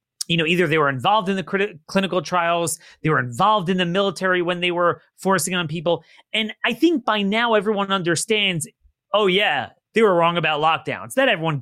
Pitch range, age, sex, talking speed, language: 150-215 Hz, 30-49, male, 195 wpm, English